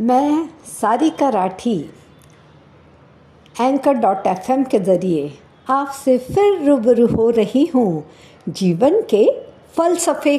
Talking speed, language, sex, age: 100 wpm, Hindi, female, 60-79